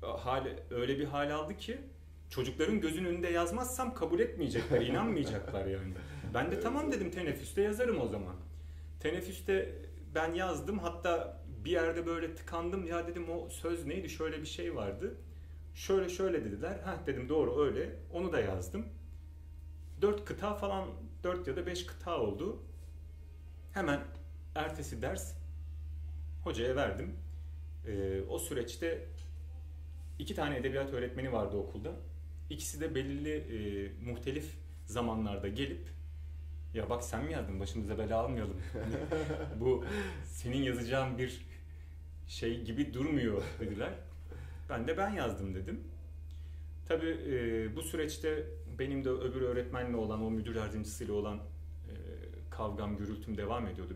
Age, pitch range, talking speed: 40-59, 75-110 Hz, 130 wpm